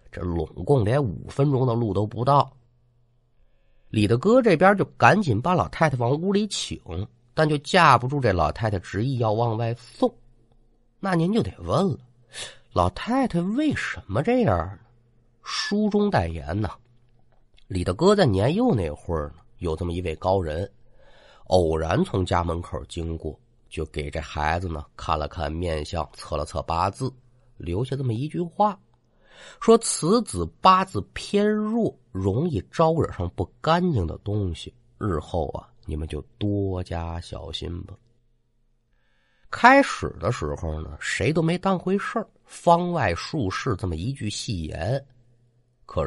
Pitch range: 85-140 Hz